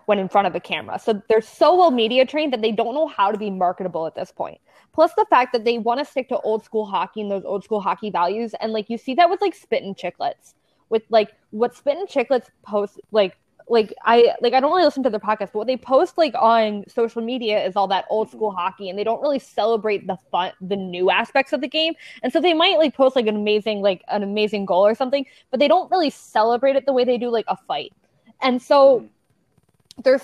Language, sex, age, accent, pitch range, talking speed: English, female, 20-39, American, 195-250 Hz, 250 wpm